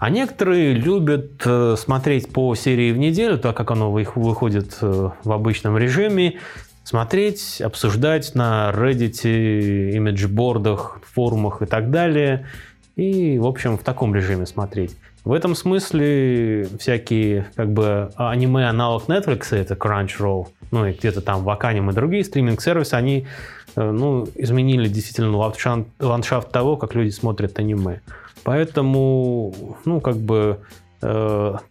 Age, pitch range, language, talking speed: 20-39, 105-135 Hz, Russian, 125 wpm